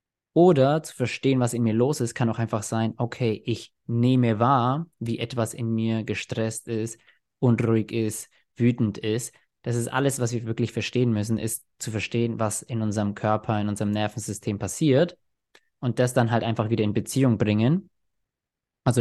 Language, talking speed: German, 175 wpm